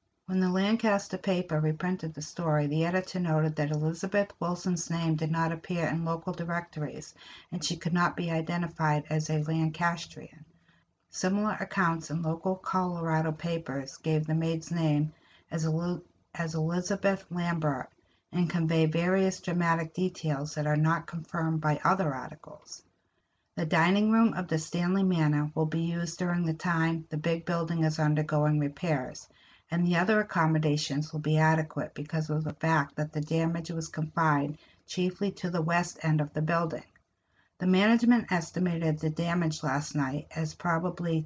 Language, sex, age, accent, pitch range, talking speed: English, female, 60-79, American, 155-175 Hz, 155 wpm